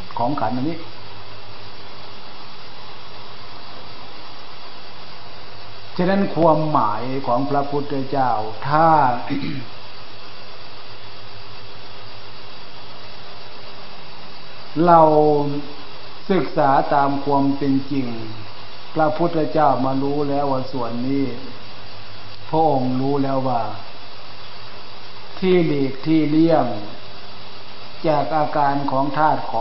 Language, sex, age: Thai, male, 60-79